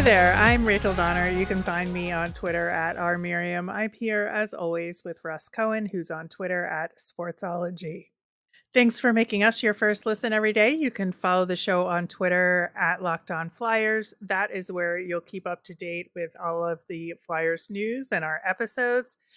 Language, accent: English, American